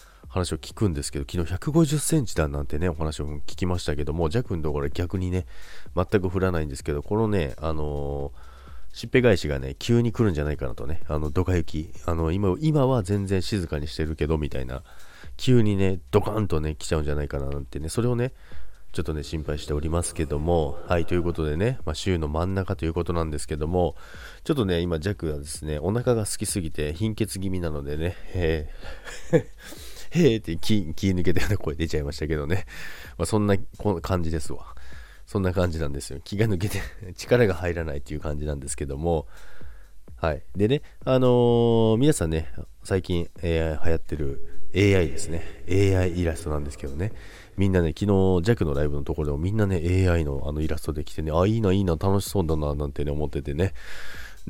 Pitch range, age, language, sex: 75-95 Hz, 40-59, Japanese, male